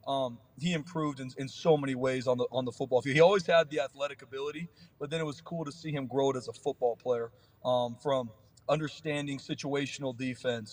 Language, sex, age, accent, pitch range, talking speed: English, male, 30-49, American, 130-145 Hz, 220 wpm